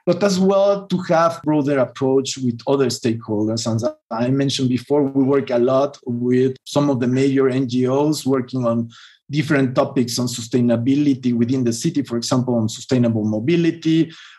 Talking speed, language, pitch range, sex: 165 wpm, English, 125-155 Hz, male